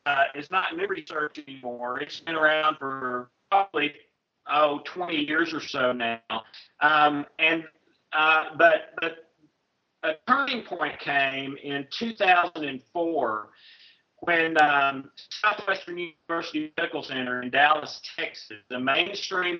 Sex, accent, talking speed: male, American, 120 wpm